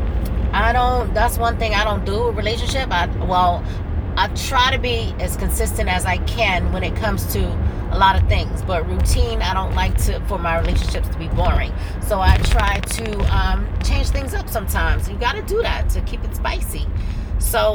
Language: English